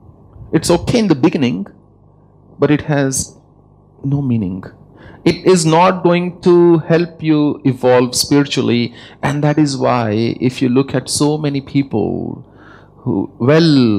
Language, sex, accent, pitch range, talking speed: English, male, Indian, 115-145 Hz, 135 wpm